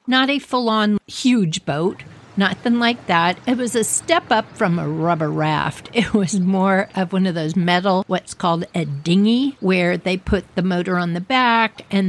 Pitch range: 170-225 Hz